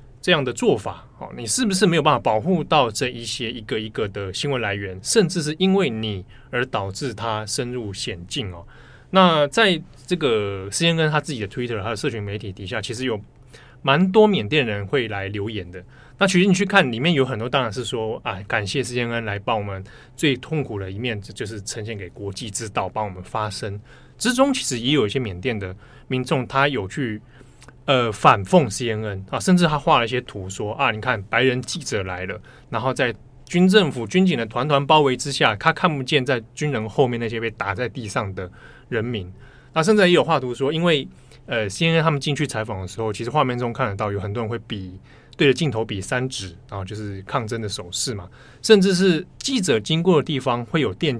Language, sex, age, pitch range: Chinese, male, 20-39, 110-145 Hz